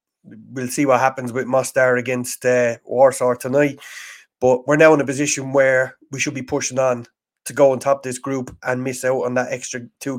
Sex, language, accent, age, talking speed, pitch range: male, English, Irish, 30-49, 205 wpm, 130-150 Hz